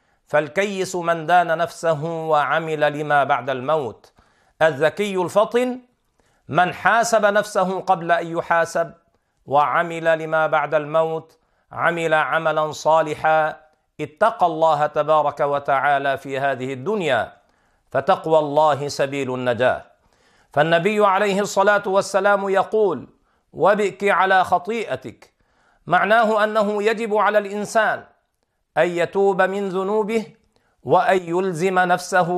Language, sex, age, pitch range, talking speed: Arabic, male, 50-69, 155-195 Hz, 100 wpm